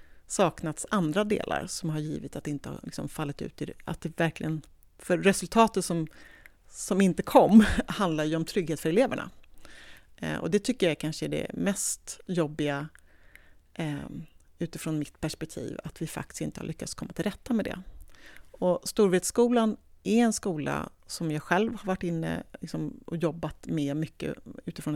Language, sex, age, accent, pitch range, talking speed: English, female, 40-59, Swedish, 155-200 Hz, 165 wpm